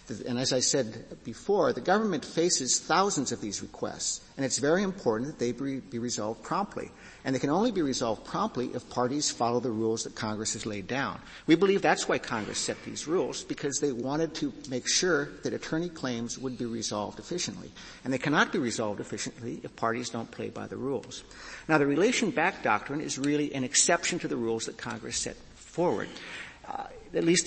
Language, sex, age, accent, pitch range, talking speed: English, male, 60-79, American, 120-150 Hz, 200 wpm